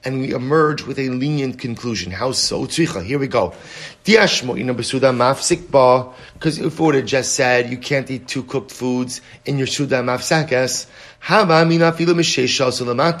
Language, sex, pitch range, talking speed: English, male, 130-170 Hz, 130 wpm